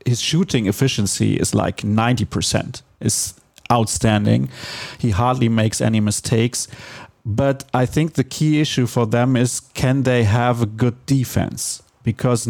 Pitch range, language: 115-140 Hz, English